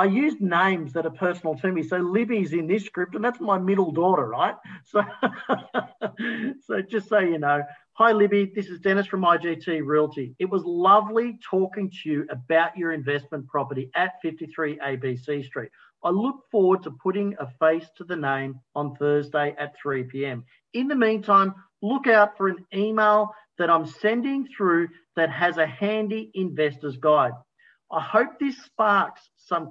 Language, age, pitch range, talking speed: English, 40-59, 155-205 Hz, 170 wpm